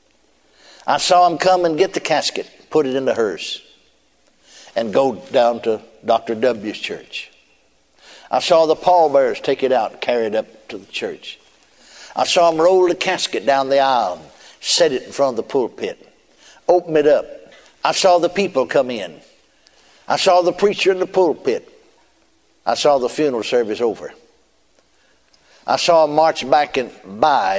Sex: male